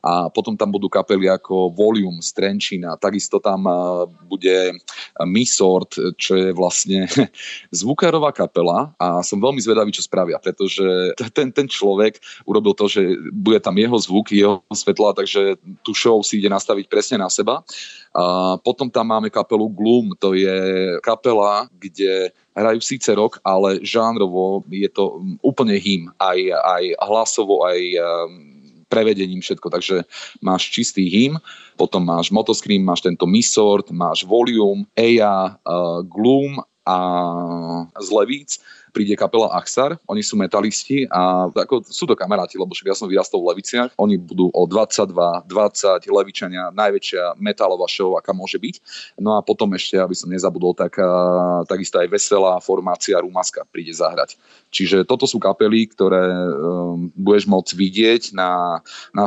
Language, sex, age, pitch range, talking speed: Slovak, male, 30-49, 90-110 Hz, 145 wpm